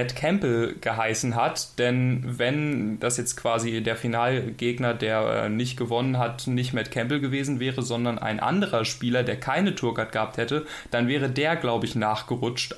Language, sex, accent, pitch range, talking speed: German, male, German, 120-140 Hz, 165 wpm